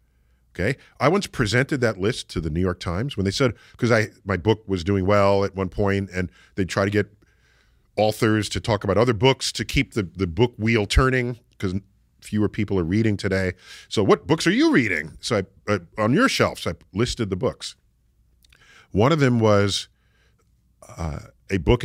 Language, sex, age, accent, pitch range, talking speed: English, male, 40-59, American, 95-130 Hz, 200 wpm